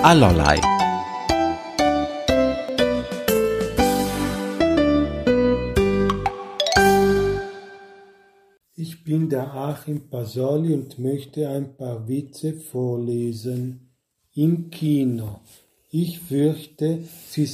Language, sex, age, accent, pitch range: German, male, 50-69, German, 130-155 Hz